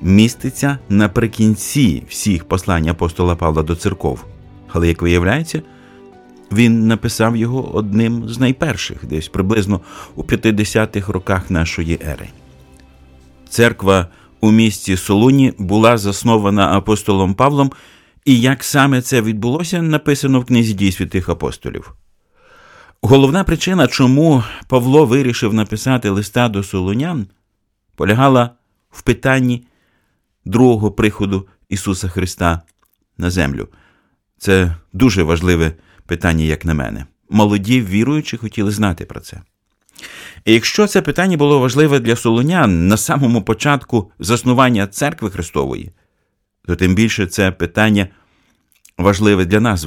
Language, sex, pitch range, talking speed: Ukrainian, male, 95-120 Hz, 115 wpm